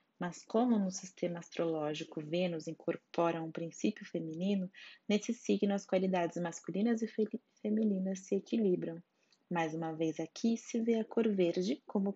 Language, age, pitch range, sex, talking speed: Portuguese, 20-39, 160-210 Hz, female, 145 wpm